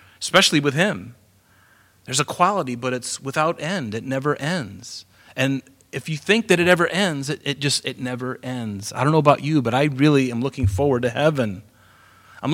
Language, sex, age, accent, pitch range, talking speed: English, male, 30-49, American, 115-150 Hz, 195 wpm